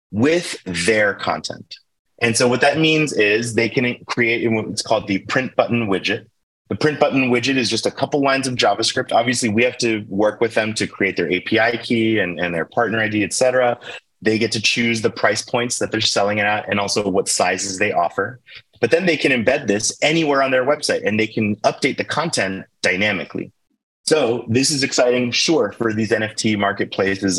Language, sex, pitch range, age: English, male, 95-120 Hz, 30-49